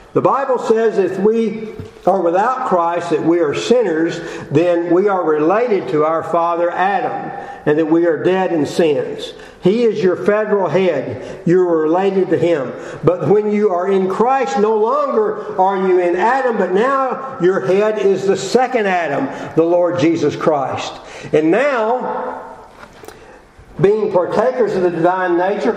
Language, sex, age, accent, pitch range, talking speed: English, male, 50-69, American, 155-210 Hz, 160 wpm